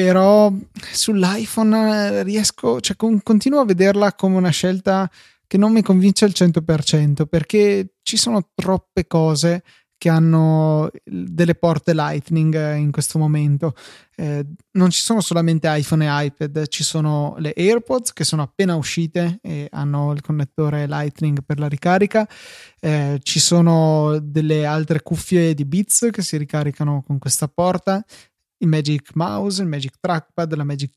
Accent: native